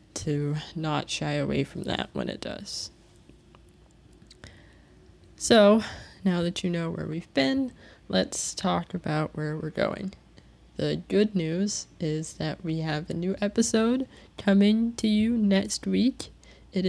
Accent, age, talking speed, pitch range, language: American, 20-39, 140 wpm, 160-190 Hz, English